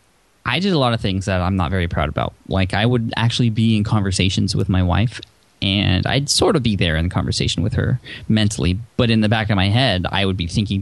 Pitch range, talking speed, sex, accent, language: 95-120 Hz, 245 wpm, male, American, English